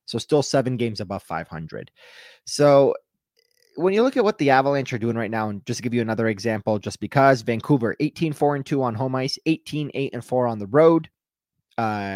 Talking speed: 210 wpm